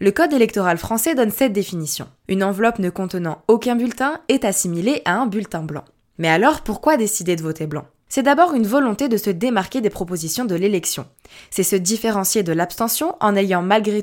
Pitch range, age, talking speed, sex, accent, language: 170-230 Hz, 20-39, 195 wpm, female, French, French